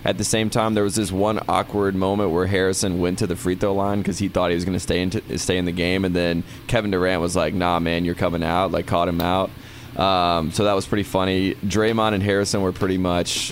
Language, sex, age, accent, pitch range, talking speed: English, male, 20-39, American, 90-105 Hz, 250 wpm